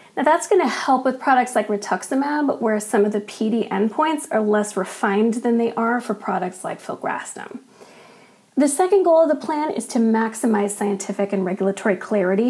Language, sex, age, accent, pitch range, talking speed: English, female, 40-59, American, 210-260 Hz, 180 wpm